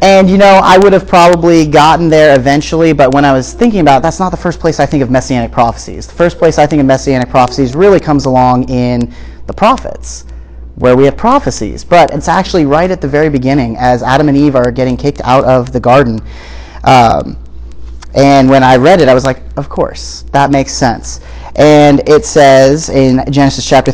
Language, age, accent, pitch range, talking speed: English, 30-49, American, 125-165 Hz, 210 wpm